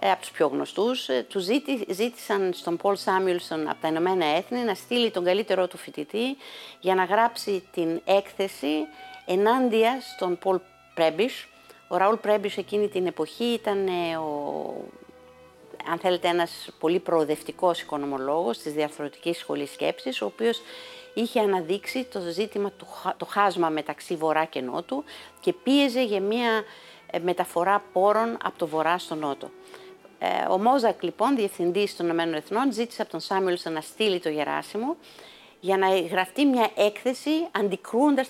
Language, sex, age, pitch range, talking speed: Greek, female, 50-69, 165-215 Hz, 145 wpm